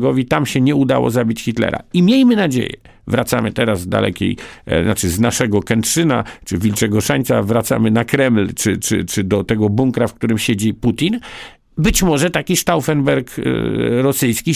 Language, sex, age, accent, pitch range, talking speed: Polish, male, 50-69, native, 110-150 Hz, 155 wpm